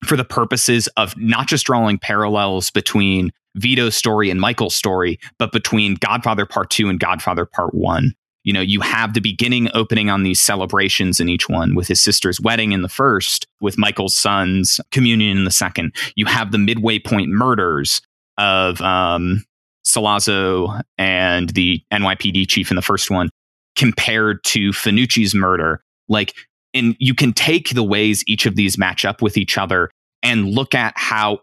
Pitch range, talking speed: 100-120 Hz, 170 wpm